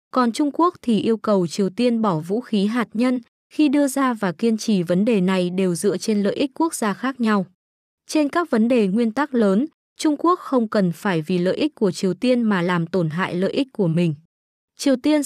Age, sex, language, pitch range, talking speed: 20-39, female, Vietnamese, 195-255 Hz, 230 wpm